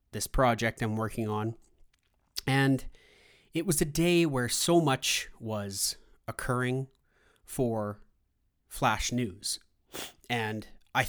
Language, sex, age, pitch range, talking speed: English, male, 30-49, 105-135 Hz, 110 wpm